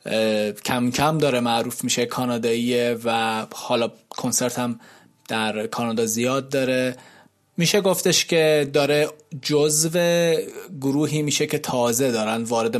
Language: Persian